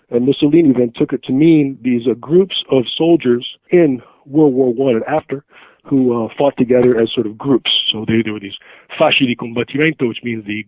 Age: 50-69